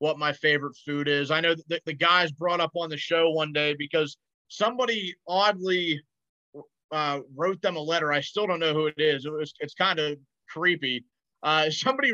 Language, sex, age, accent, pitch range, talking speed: English, male, 30-49, American, 140-170 Hz, 195 wpm